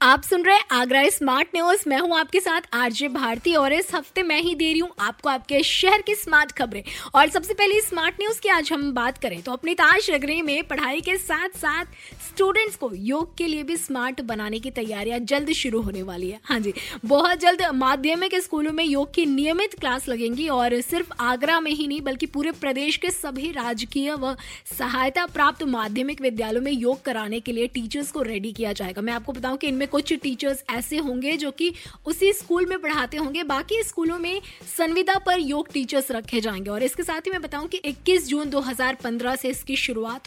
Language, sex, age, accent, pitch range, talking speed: Hindi, female, 20-39, native, 250-325 Hz, 205 wpm